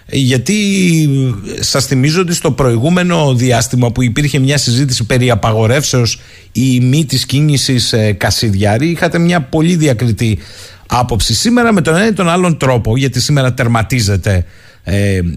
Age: 50-69